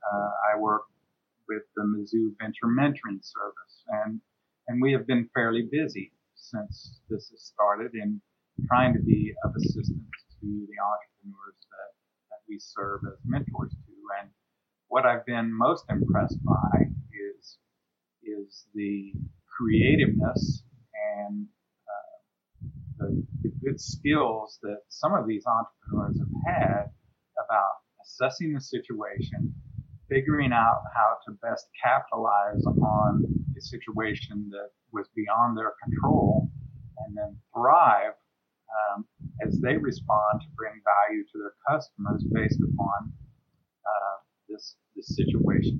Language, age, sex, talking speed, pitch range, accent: English, 40-59, male, 125 wpm, 105-150 Hz, American